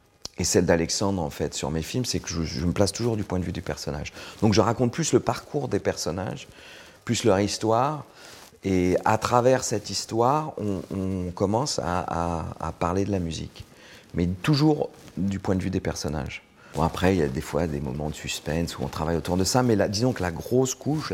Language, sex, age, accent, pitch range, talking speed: French, male, 40-59, French, 80-105 Hz, 225 wpm